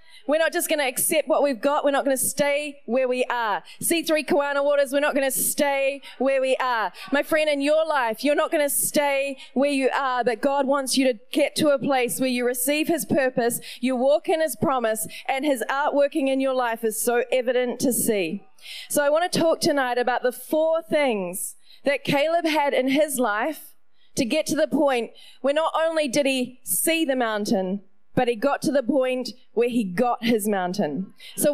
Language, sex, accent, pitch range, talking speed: English, female, Australian, 245-295 Hz, 215 wpm